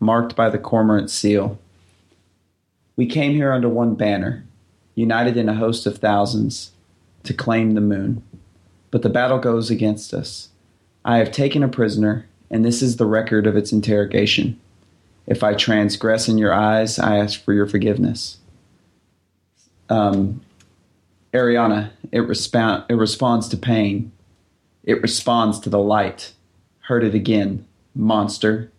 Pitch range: 95-115 Hz